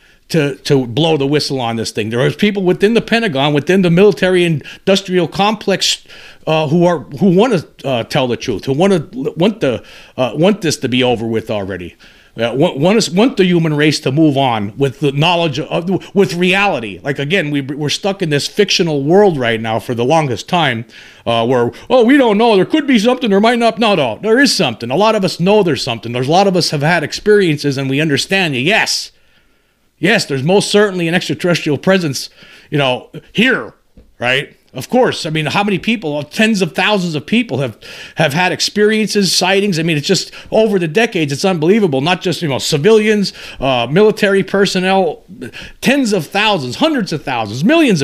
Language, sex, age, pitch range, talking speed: English, male, 50-69, 145-200 Hz, 205 wpm